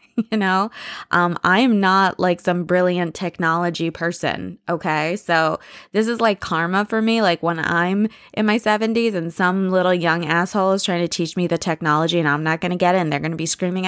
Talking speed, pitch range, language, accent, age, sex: 210 wpm, 165-200 Hz, English, American, 20-39, female